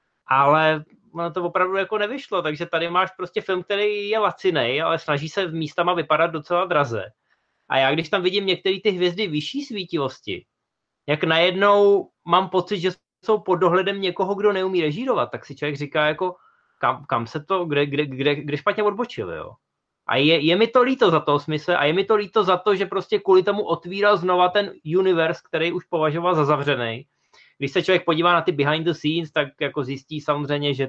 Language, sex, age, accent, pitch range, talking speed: Czech, male, 20-39, native, 145-185 Hz, 200 wpm